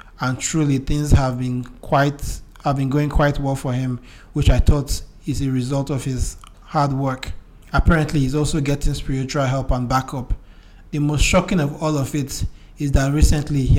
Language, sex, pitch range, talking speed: English, male, 130-150 Hz, 175 wpm